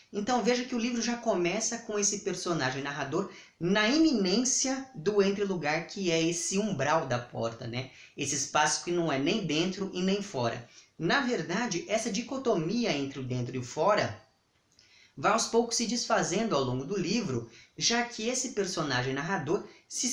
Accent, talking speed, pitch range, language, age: Brazilian, 170 wpm, 145-230 Hz, Portuguese, 20-39